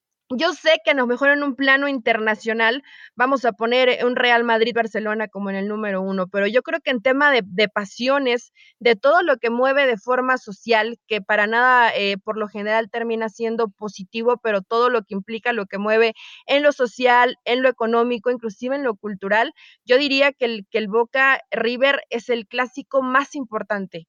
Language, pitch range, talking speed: Spanish, 220-260 Hz, 195 wpm